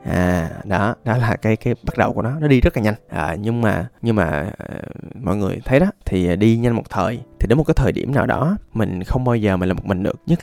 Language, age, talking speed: Vietnamese, 20-39, 275 wpm